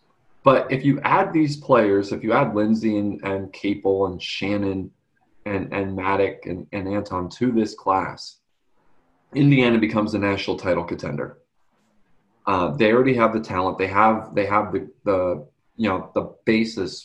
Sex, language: male, English